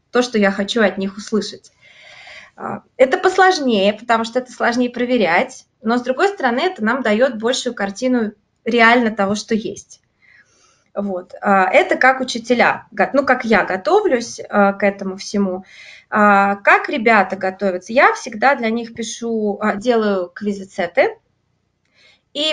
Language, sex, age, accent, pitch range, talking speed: Russian, female, 20-39, native, 210-260 Hz, 130 wpm